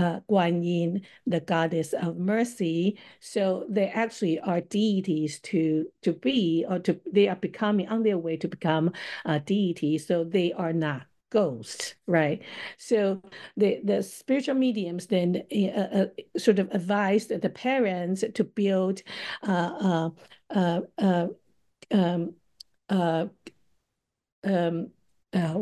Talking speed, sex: 110 wpm, female